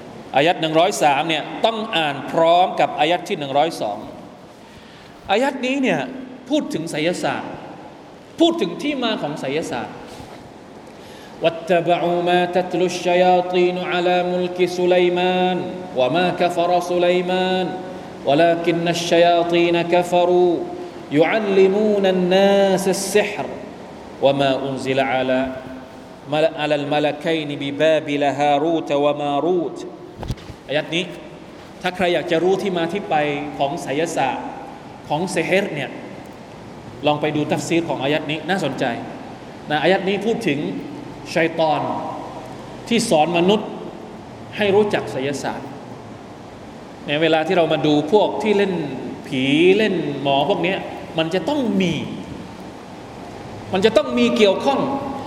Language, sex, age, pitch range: Thai, male, 30-49, 155-200 Hz